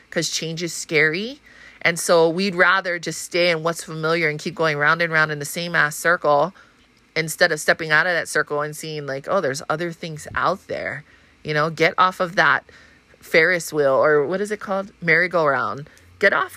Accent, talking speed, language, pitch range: American, 210 wpm, English, 150-185 Hz